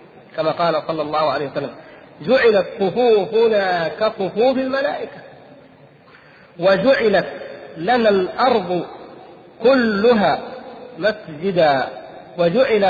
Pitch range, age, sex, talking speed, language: 170-215 Hz, 50-69, male, 75 wpm, Arabic